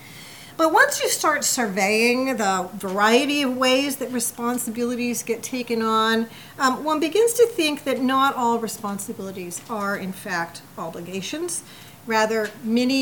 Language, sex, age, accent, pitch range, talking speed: English, female, 40-59, American, 195-260 Hz, 140 wpm